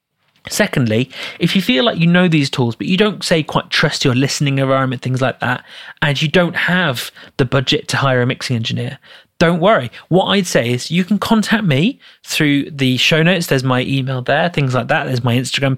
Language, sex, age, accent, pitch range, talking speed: English, male, 30-49, British, 130-170 Hz, 215 wpm